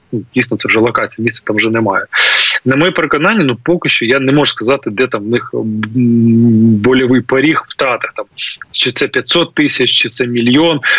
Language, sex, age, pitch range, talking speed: Ukrainian, male, 20-39, 120-140 Hz, 180 wpm